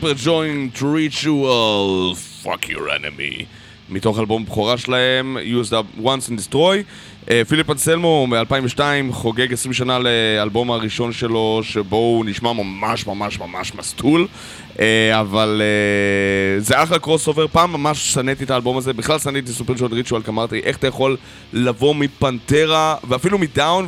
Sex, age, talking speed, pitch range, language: male, 20-39, 145 wpm, 105-130 Hz, Hebrew